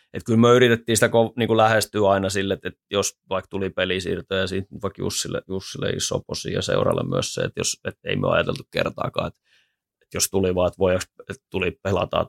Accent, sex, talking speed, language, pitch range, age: native, male, 205 wpm, Finnish, 95-115 Hz, 20-39